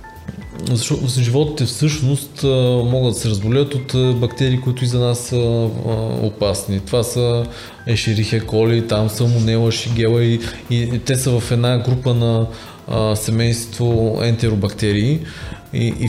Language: Bulgarian